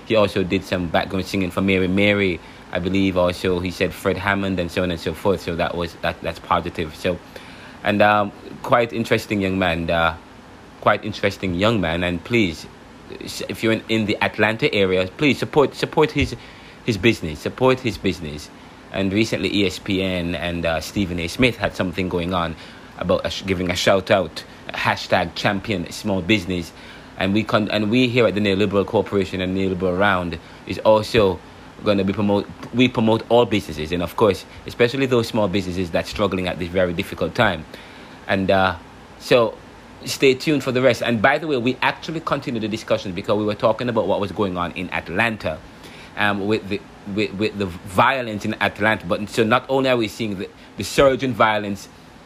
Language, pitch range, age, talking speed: English, 90-110 Hz, 30-49, 190 wpm